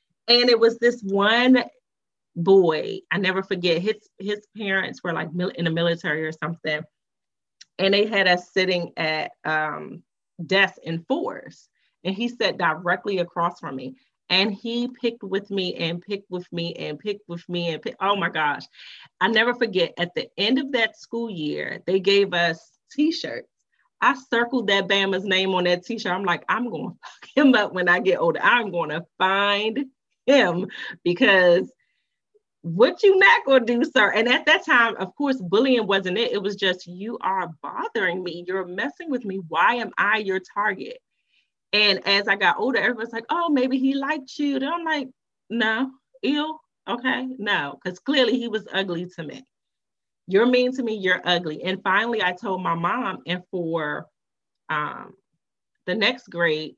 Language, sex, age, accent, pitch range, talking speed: English, female, 30-49, American, 175-245 Hz, 180 wpm